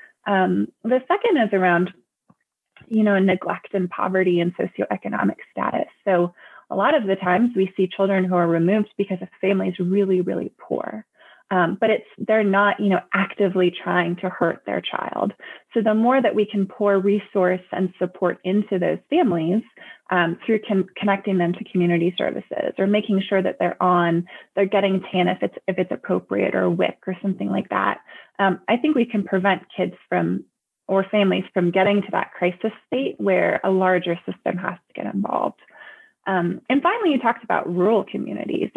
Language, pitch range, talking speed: English, 185-220 Hz, 185 wpm